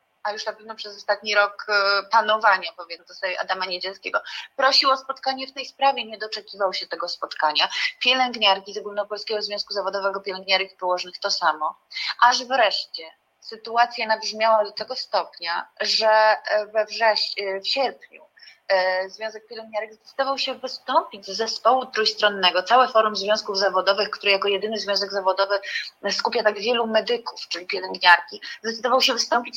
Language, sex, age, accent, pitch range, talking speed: Polish, female, 30-49, native, 200-250 Hz, 140 wpm